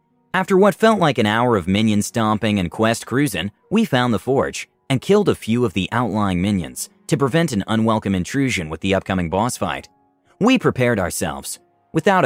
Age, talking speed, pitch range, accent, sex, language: 30-49, 185 wpm, 95-155 Hz, American, male, English